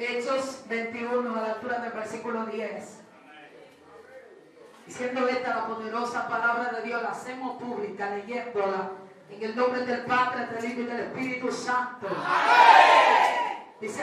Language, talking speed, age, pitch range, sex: Spanish, 135 wpm, 40-59, 235-265 Hz, female